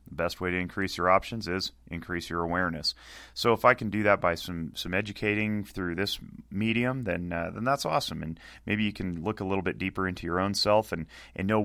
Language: English